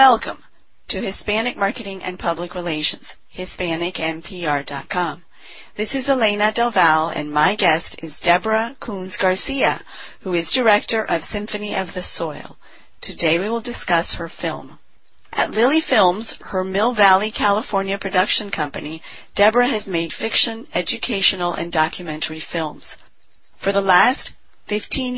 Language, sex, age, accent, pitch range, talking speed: English, female, 40-59, American, 180-225 Hz, 130 wpm